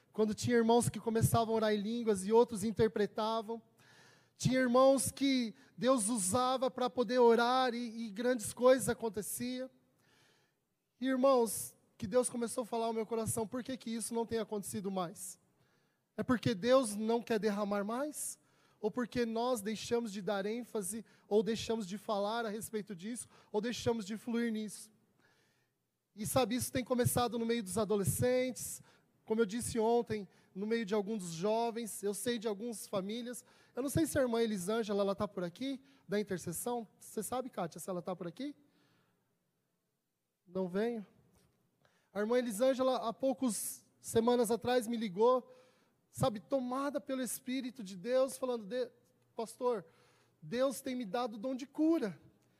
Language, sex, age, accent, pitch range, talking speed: Portuguese, male, 20-39, Brazilian, 215-250 Hz, 160 wpm